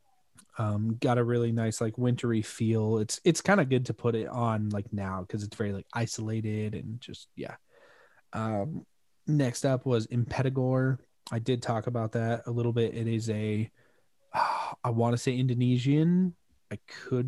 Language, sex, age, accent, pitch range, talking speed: English, male, 20-39, American, 110-135 Hz, 175 wpm